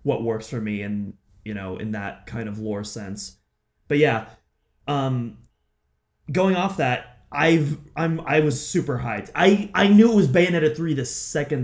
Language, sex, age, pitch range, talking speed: English, male, 30-49, 115-155 Hz, 175 wpm